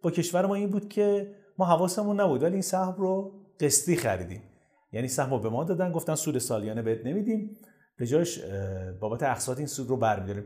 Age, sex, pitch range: 30-49, male, 125-195 Hz